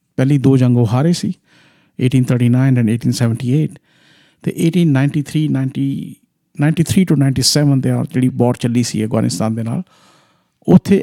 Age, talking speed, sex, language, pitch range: 50-69, 135 wpm, male, Punjabi, 125-160 Hz